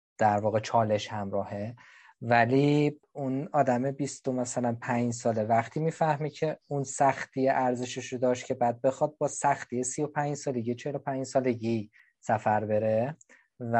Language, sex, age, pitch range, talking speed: Persian, male, 20-39, 115-135 Hz, 135 wpm